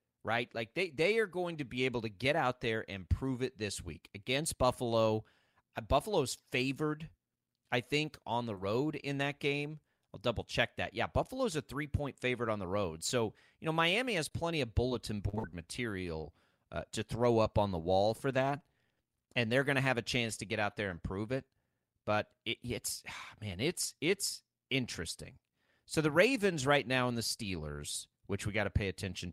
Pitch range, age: 95-130 Hz, 30-49